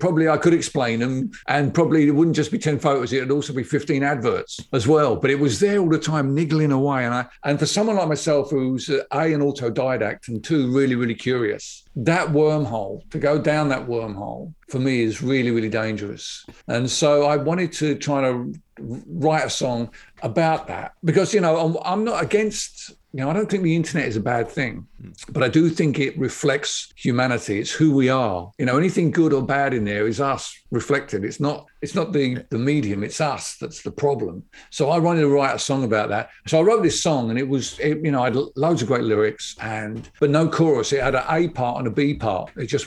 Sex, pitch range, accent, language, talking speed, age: male, 120-155 Hz, British, English, 230 wpm, 50-69